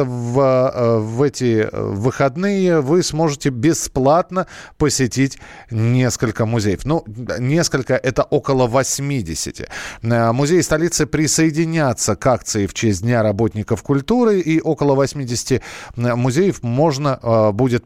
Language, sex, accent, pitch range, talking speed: Russian, male, native, 120-160 Hz, 105 wpm